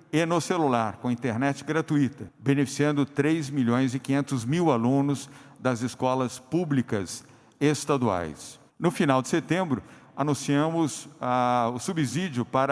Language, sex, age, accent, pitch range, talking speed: Portuguese, male, 50-69, Brazilian, 125-150 Hz, 120 wpm